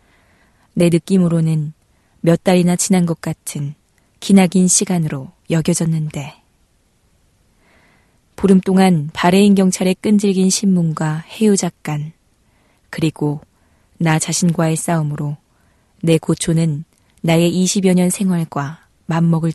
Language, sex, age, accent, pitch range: Korean, female, 20-39, native, 150-180 Hz